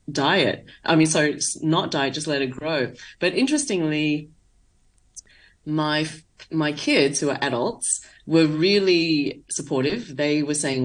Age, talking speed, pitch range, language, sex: 30-49, 135 wpm, 140-180 Hz, English, female